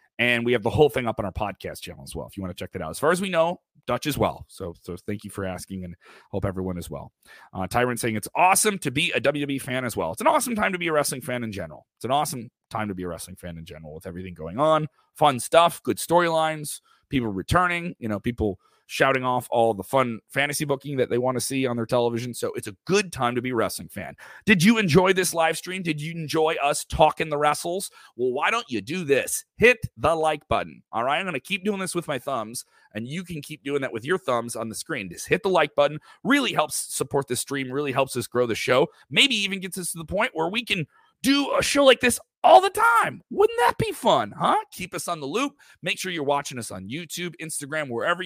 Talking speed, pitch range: 260 wpm, 110-165 Hz